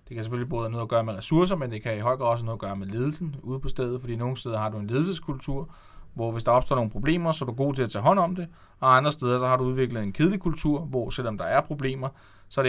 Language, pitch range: Danish, 105-130 Hz